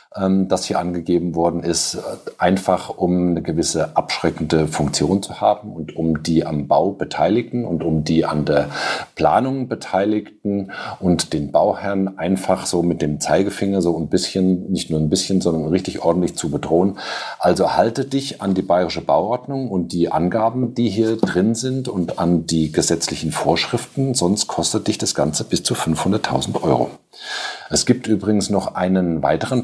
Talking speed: 160 wpm